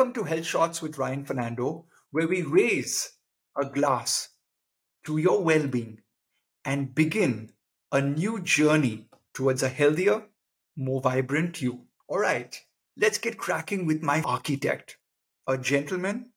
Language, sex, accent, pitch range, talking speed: English, male, Indian, 135-165 Hz, 130 wpm